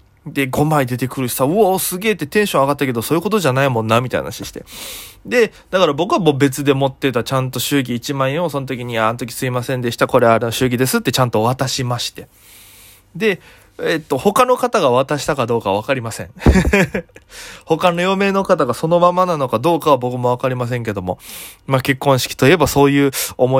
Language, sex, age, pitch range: Japanese, male, 20-39, 120-165 Hz